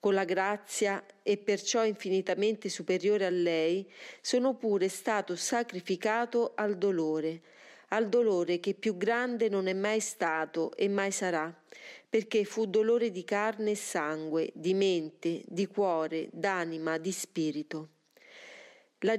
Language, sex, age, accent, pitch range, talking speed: Italian, female, 40-59, native, 175-225 Hz, 130 wpm